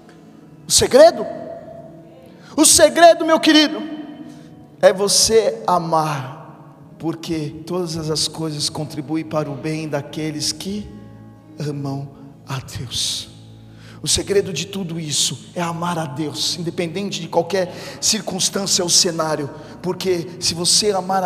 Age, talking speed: 40-59, 115 wpm